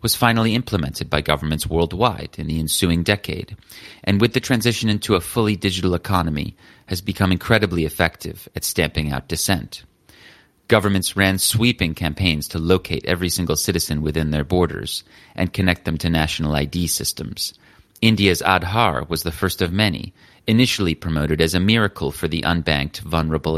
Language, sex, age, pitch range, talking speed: English, male, 30-49, 80-100 Hz, 160 wpm